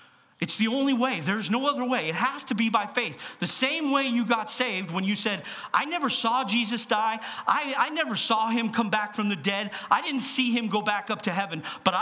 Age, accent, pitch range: 50-69, American, 170-250 Hz